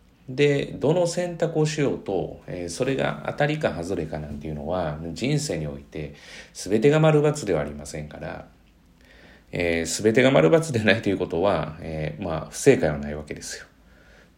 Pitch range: 80-115 Hz